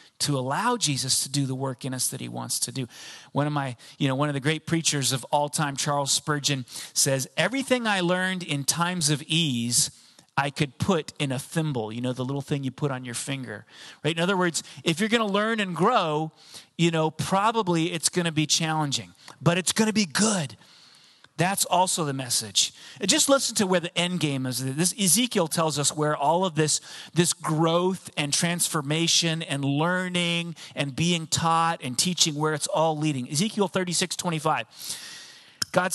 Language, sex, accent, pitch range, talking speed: English, male, American, 140-175 Hz, 195 wpm